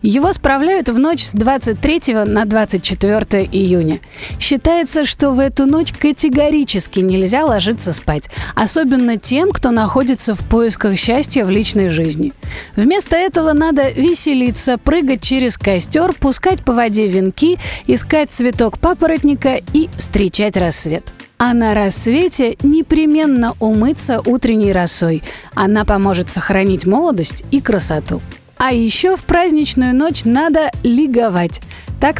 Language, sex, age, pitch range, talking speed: Russian, female, 30-49, 210-285 Hz, 125 wpm